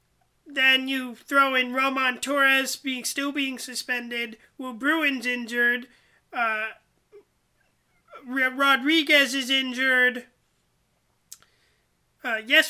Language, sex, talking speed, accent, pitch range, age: English, male, 95 wpm, American, 245-290 Hz, 30-49